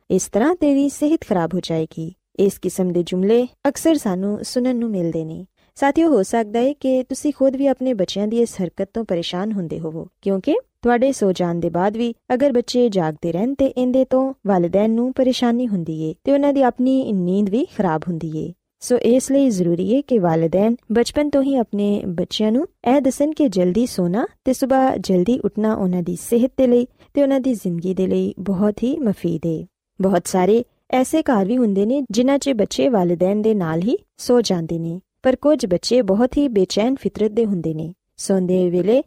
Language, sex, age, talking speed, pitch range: Punjabi, female, 20-39, 195 wpm, 180-255 Hz